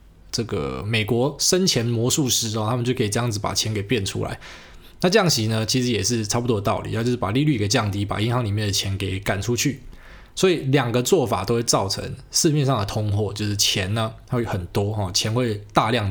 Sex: male